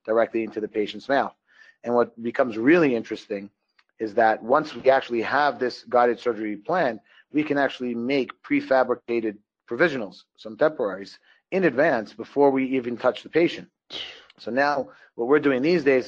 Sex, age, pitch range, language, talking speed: male, 30-49, 110-130 Hz, English, 160 wpm